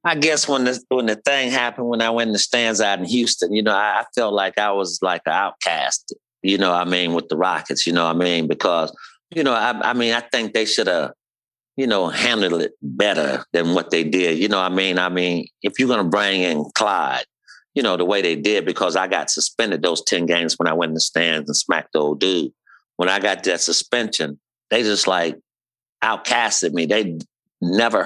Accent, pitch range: American, 85-115 Hz